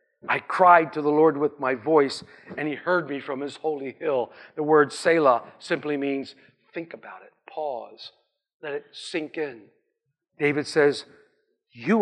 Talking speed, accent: 160 wpm, American